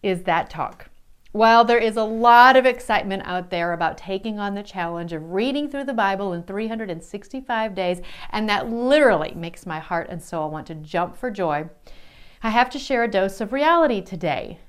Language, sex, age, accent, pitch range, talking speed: English, female, 40-59, American, 175-245 Hz, 190 wpm